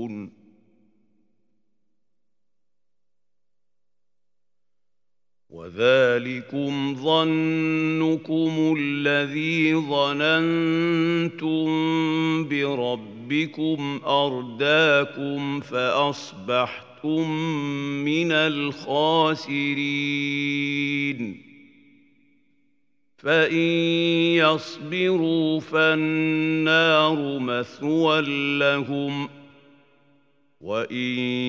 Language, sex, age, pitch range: Arabic, male, 50-69, 125-160 Hz